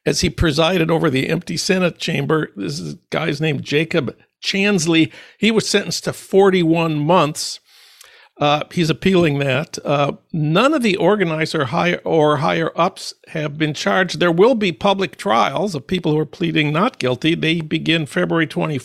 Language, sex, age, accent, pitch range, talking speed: English, male, 60-79, American, 155-185 Hz, 160 wpm